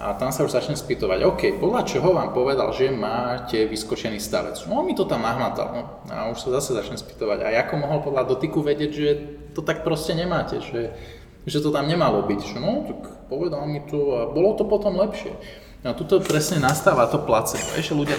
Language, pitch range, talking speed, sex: Slovak, 120-160 Hz, 210 wpm, male